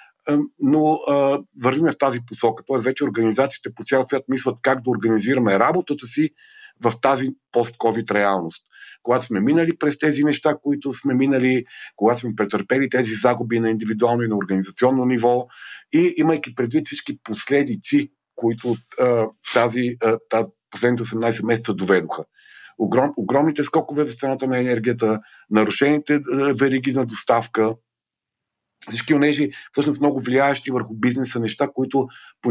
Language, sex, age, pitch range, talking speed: Bulgarian, male, 50-69, 115-145 Hz, 150 wpm